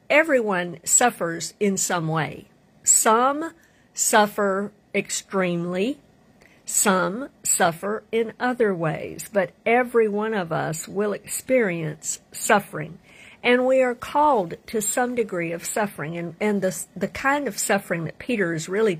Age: 50-69